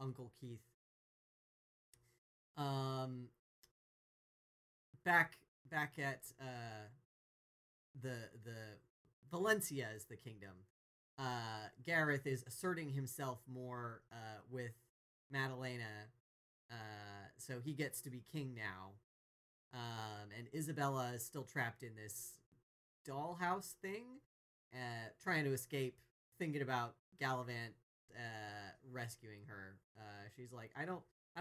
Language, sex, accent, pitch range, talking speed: English, male, American, 120-145 Hz, 105 wpm